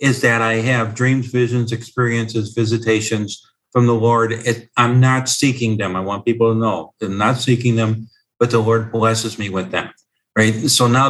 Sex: male